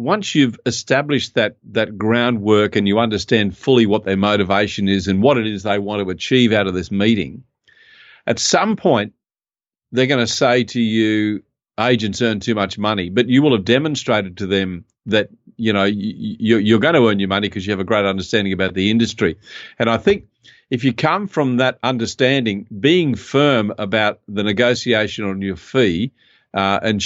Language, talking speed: English, 190 wpm